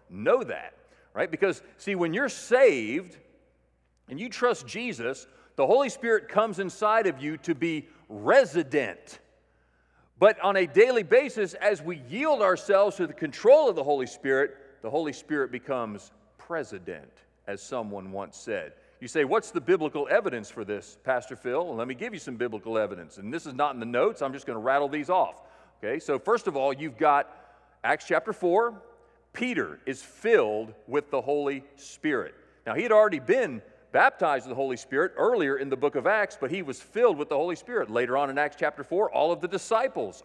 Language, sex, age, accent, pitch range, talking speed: English, male, 40-59, American, 130-215 Hz, 190 wpm